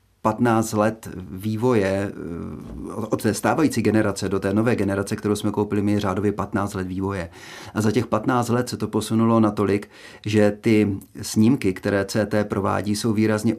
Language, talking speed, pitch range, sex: Czech, 160 wpm, 100-110 Hz, male